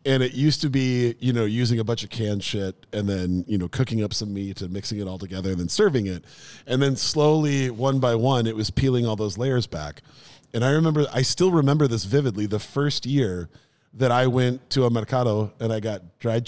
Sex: male